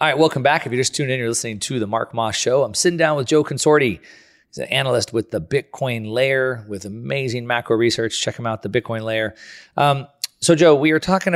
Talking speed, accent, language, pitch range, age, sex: 240 wpm, American, English, 110-135 Hz, 30-49, male